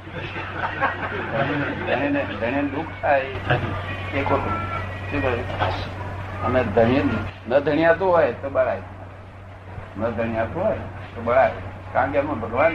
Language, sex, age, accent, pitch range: Gujarati, male, 60-79, native, 95-135 Hz